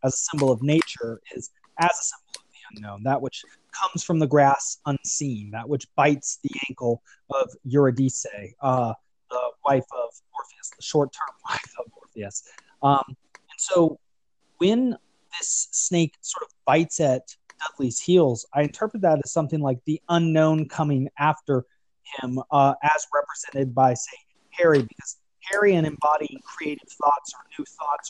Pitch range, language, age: 130-165 Hz, English, 30-49